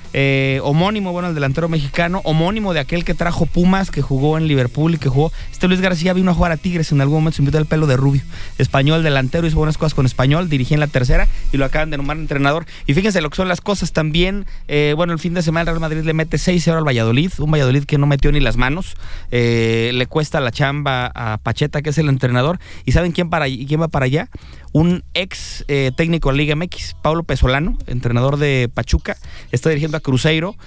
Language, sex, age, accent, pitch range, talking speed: English, male, 30-49, Mexican, 135-170 Hz, 230 wpm